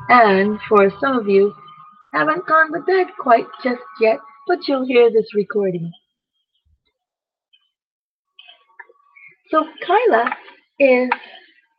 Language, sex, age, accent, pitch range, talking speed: English, female, 40-59, American, 200-320 Hz, 100 wpm